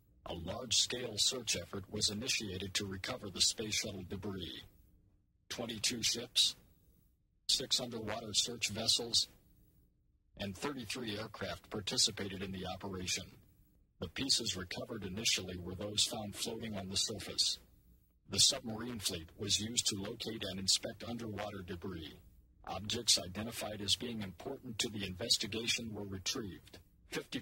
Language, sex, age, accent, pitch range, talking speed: English, male, 50-69, American, 95-115 Hz, 125 wpm